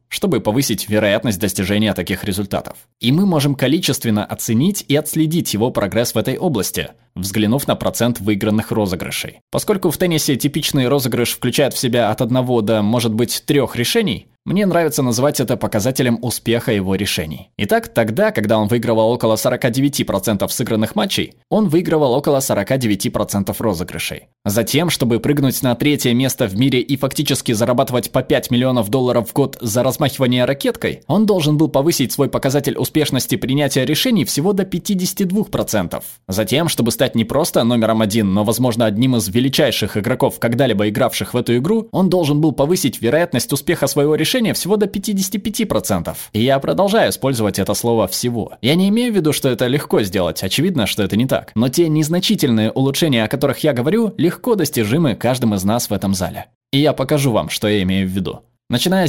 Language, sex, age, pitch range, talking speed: Russian, male, 20-39, 110-150 Hz, 170 wpm